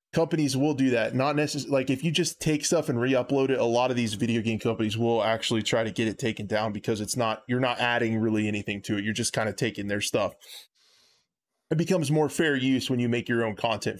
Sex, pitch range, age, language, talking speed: male, 120-155 Hz, 20-39, English, 250 wpm